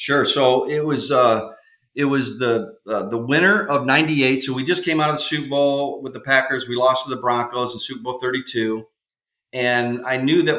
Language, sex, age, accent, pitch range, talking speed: English, male, 40-59, American, 120-140 Hz, 215 wpm